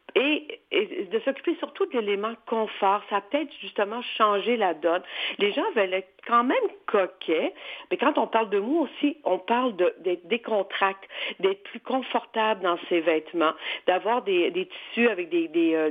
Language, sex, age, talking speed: French, female, 50-69, 175 wpm